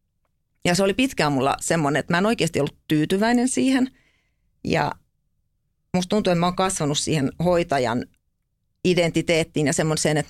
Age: 40-59